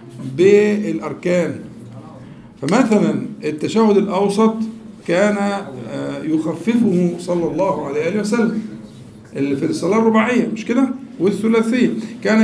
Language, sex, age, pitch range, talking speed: Arabic, male, 50-69, 175-230 Hz, 80 wpm